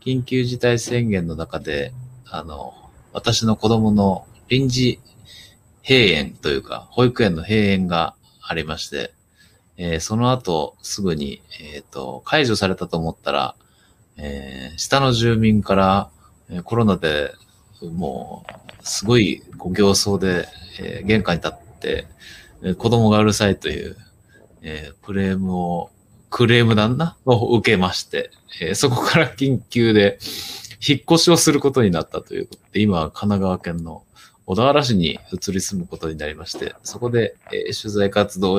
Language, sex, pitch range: Japanese, male, 90-120 Hz